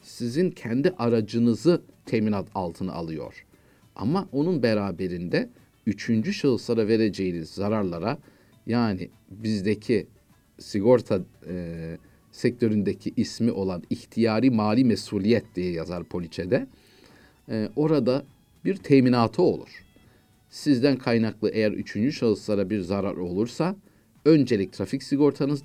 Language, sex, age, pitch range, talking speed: Turkish, male, 50-69, 105-135 Hz, 100 wpm